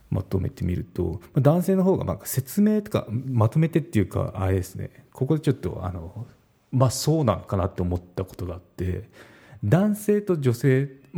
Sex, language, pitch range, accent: male, Japanese, 95-125 Hz, native